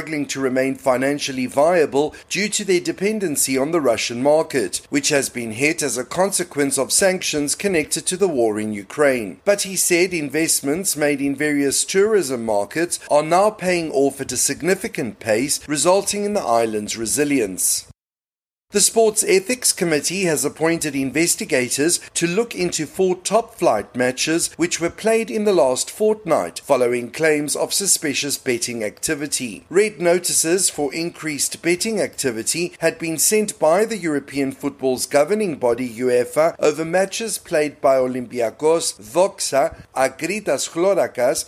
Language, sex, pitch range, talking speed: English, male, 135-185 Hz, 145 wpm